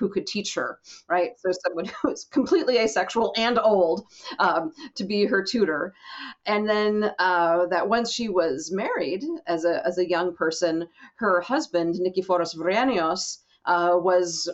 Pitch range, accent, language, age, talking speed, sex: 175-240 Hz, American, English, 40-59, 155 wpm, female